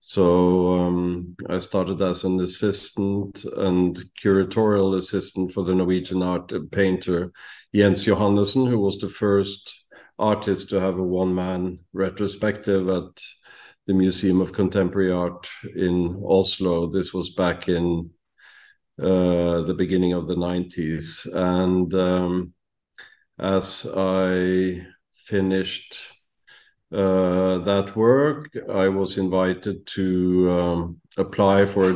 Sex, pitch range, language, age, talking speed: male, 90-100 Hz, English, 50-69, 115 wpm